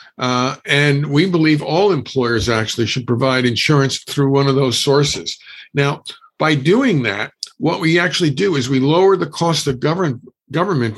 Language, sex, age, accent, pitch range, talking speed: English, male, 50-69, American, 130-165 Hz, 165 wpm